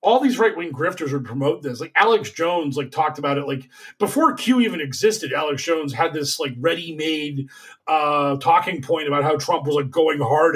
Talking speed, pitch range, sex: 200 wpm, 145-195 Hz, male